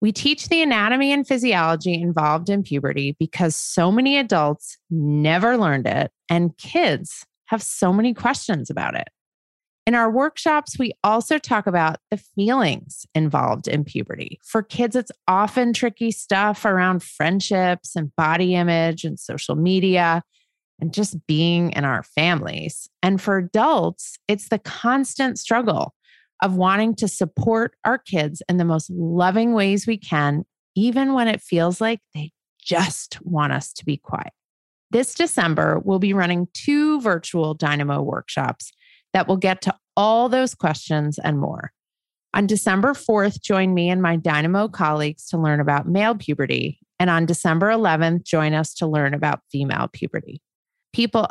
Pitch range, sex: 160-225 Hz, female